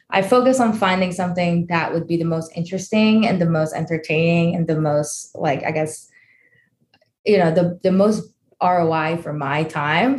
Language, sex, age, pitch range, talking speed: English, female, 20-39, 170-210 Hz, 175 wpm